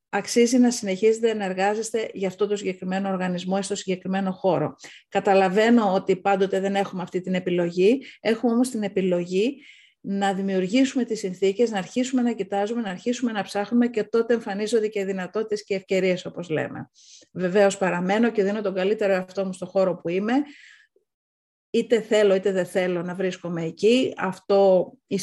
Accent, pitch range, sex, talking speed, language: native, 185-225 Hz, female, 160 wpm, Greek